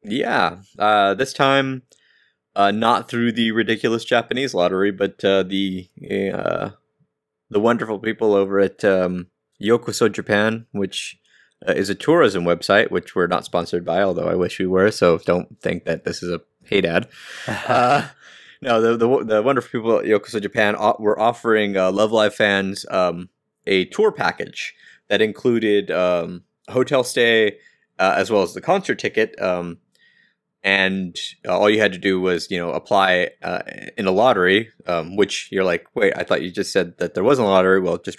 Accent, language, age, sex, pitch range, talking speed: American, English, 20-39, male, 90-115 Hz, 175 wpm